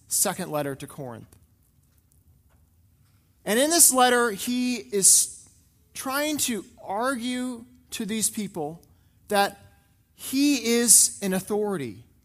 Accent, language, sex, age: American, English, male, 30-49